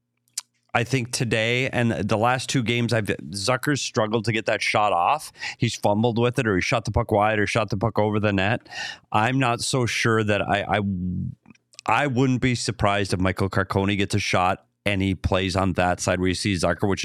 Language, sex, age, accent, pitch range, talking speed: English, male, 30-49, American, 95-125 Hz, 215 wpm